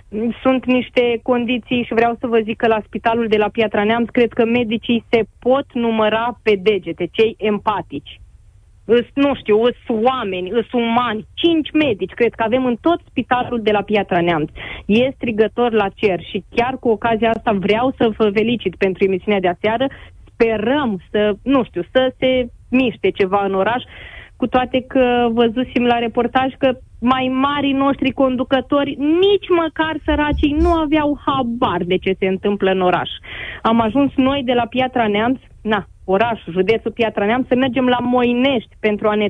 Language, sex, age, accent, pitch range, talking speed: Romanian, female, 20-39, native, 210-255 Hz, 170 wpm